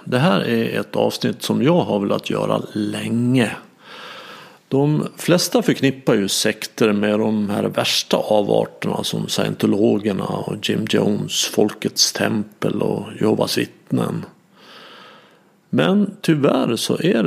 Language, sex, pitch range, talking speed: Swedish, male, 120-190 Hz, 120 wpm